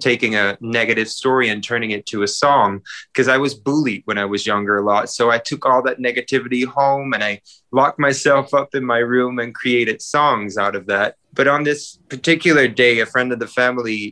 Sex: male